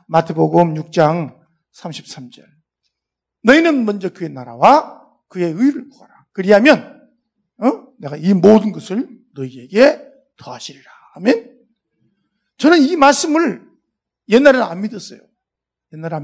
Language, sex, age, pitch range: Korean, male, 50-69, 175-250 Hz